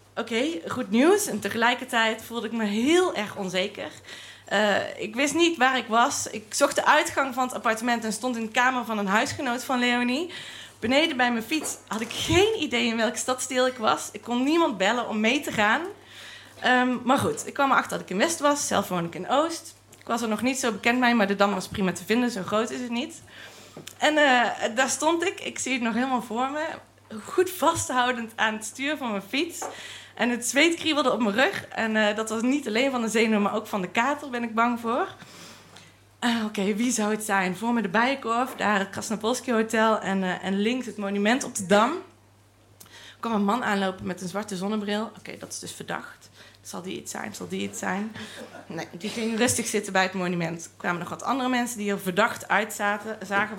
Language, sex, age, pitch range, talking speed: Dutch, female, 20-39, 205-255 Hz, 230 wpm